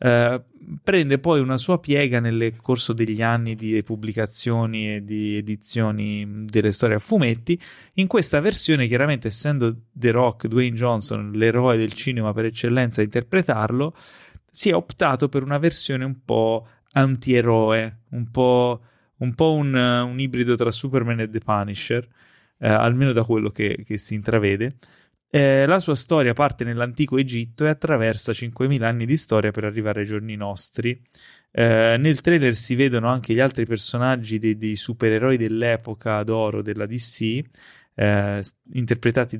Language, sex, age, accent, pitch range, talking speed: Italian, male, 30-49, native, 110-130 Hz, 145 wpm